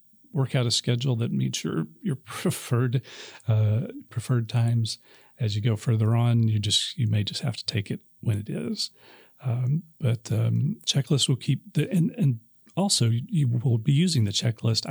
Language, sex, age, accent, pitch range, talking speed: English, male, 40-59, American, 110-140 Hz, 180 wpm